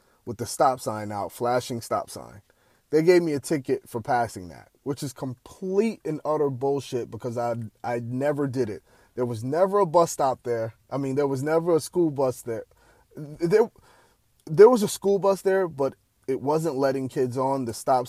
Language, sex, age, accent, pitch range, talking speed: English, male, 30-49, American, 115-155 Hz, 195 wpm